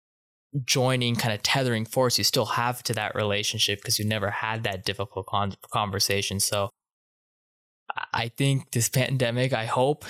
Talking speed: 150 wpm